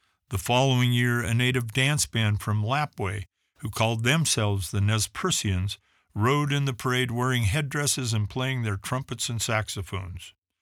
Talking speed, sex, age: 155 wpm, male, 50-69